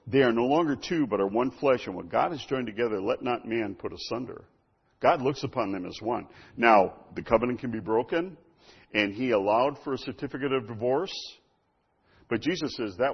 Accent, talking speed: American, 200 wpm